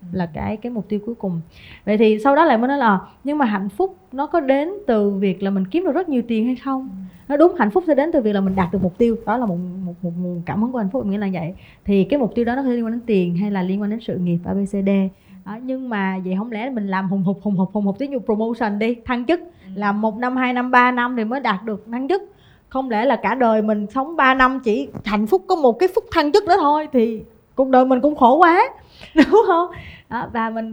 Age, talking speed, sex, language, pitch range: 20-39, 285 wpm, female, Vietnamese, 200-270 Hz